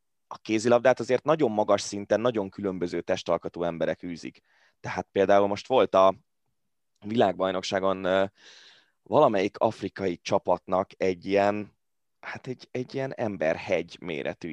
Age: 20-39